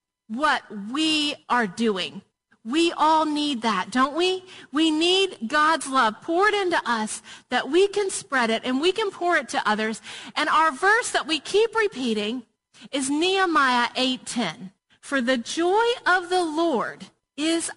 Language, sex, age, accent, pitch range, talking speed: English, female, 40-59, American, 265-400 Hz, 160 wpm